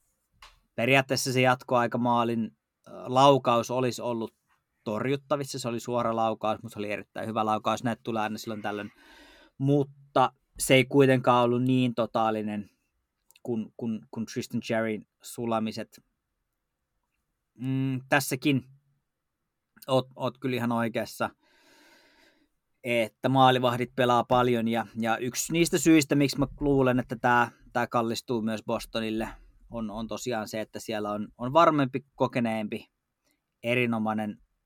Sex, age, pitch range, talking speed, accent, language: male, 20-39, 110-130 Hz, 120 wpm, native, Finnish